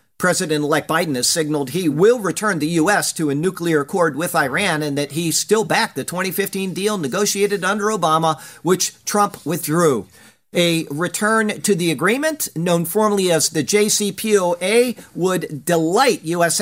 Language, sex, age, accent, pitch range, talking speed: English, male, 50-69, American, 160-210 Hz, 150 wpm